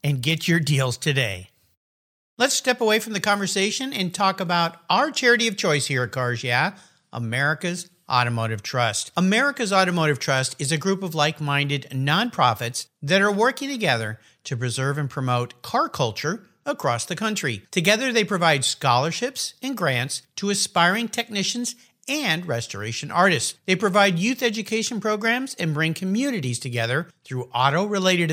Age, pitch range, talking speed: 50-69, 130-210 Hz, 150 wpm